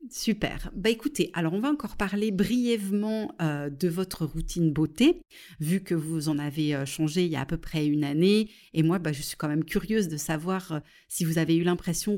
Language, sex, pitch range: French, female, 160-200 Hz